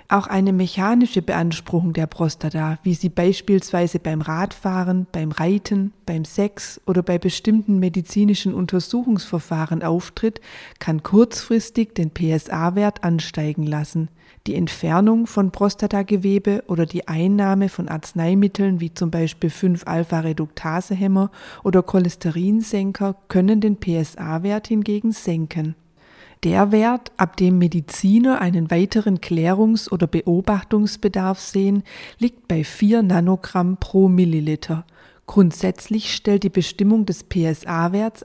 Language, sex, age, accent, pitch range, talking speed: German, female, 30-49, German, 170-200 Hz, 115 wpm